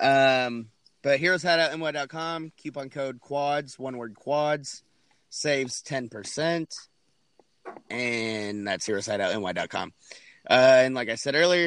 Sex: male